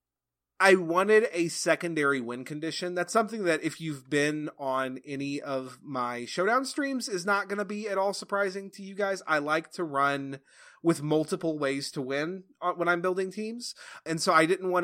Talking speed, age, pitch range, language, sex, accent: 190 wpm, 30-49, 135-185 Hz, English, male, American